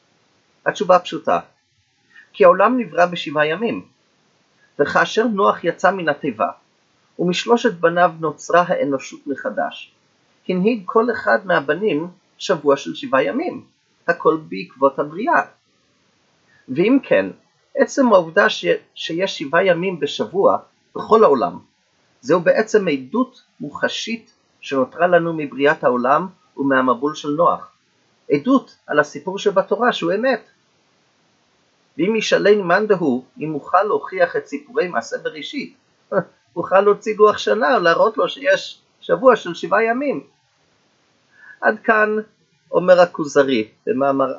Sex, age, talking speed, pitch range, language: male, 30-49, 115 wpm, 145-230 Hz, Hebrew